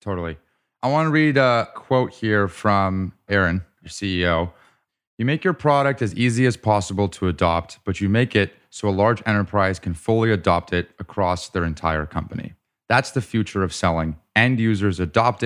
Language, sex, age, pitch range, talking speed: English, male, 30-49, 90-120 Hz, 180 wpm